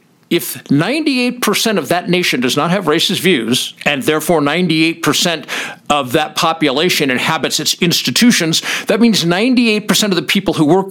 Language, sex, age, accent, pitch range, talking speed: English, male, 50-69, American, 160-230 Hz, 150 wpm